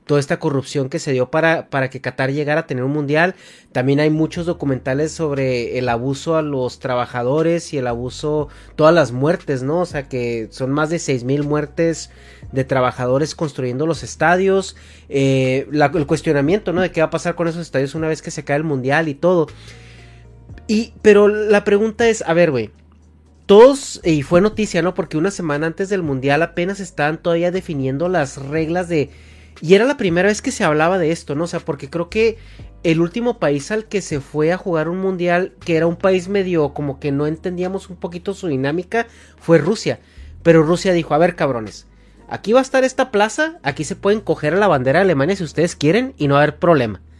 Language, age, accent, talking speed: Spanish, 30-49, Mexican, 210 wpm